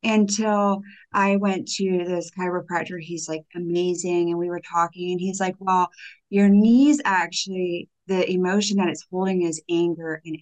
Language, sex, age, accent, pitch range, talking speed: English, female, 30-49, American, 170-200 Hz, 155 wpm